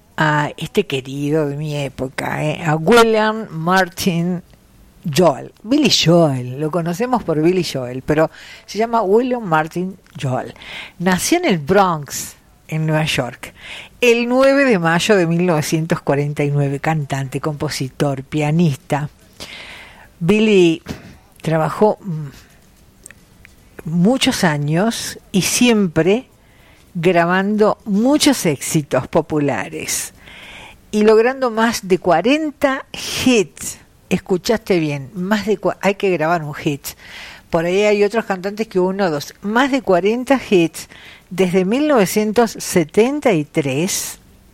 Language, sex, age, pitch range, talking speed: Spanish, female, 50-69, 150-215 Hz, 110 wpm